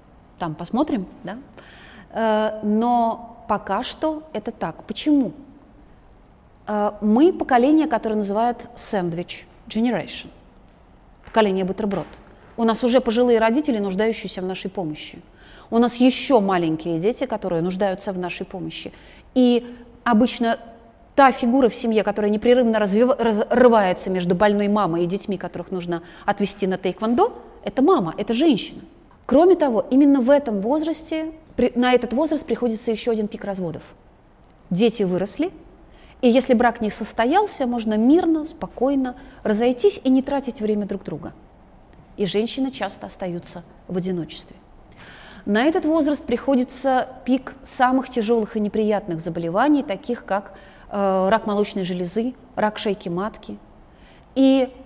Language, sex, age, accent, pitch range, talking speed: Russian, female, 30-49, native, 195-250 Hz, 130 wpm